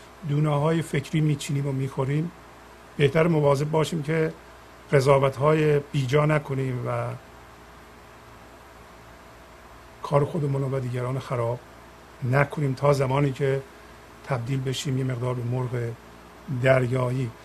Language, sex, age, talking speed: Persian, male, 50-69, 105 wpm